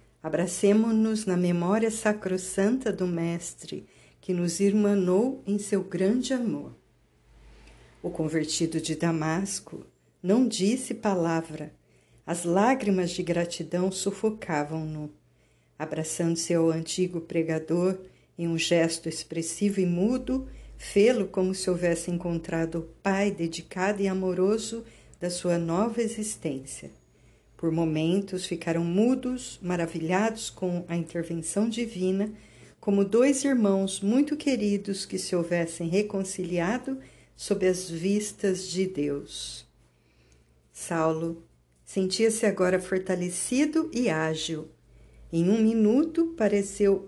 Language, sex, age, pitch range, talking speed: Portuguese, female, 50-69, 165-205 Hz, 105 wpm